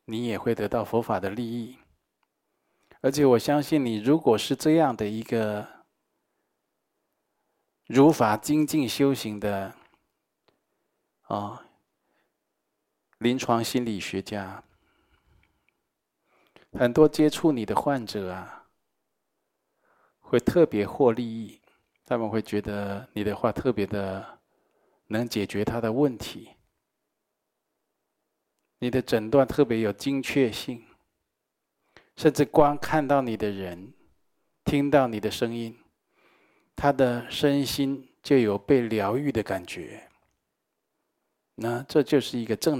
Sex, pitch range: male, 105-135 Hz